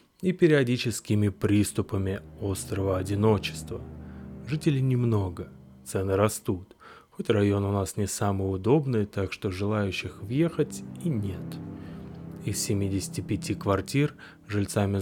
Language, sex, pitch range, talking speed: Russian, male, 95-115 Hz, 105 wpm